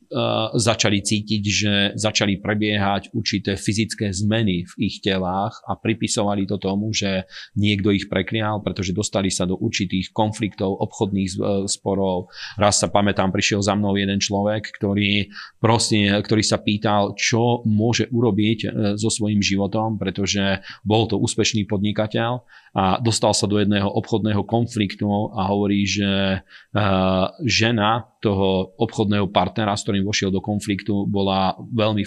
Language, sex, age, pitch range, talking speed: Slovak, male, 40-59, 100-110 Hz, 135 wpm